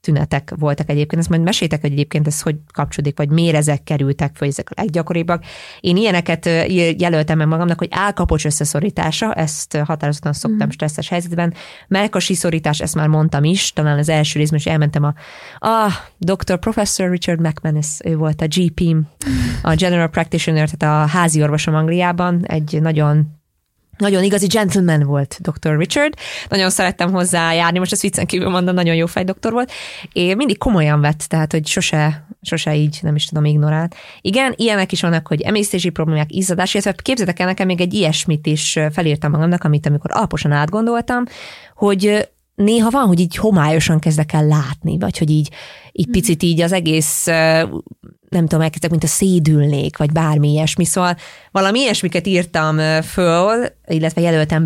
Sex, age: female, 20-39